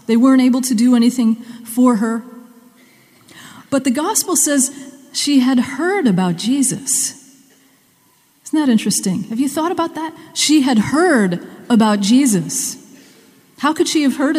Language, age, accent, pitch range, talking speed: English, 40-59, American, 205-260 Hz, 145 wpm